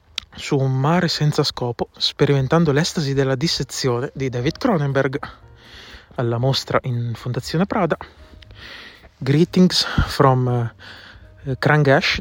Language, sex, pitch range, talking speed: Italian, male, 120-145 Hz, 100 wpm